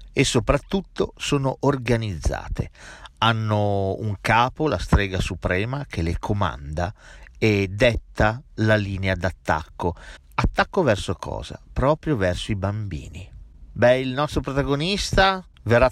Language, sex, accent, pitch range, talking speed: Italian, male, native, 95-120 Hz, 115 wpm